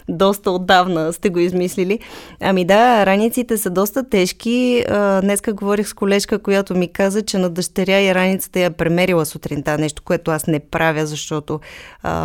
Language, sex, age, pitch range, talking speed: Bulgarian, female, 20-39, 175-215 Hz, 155 wpm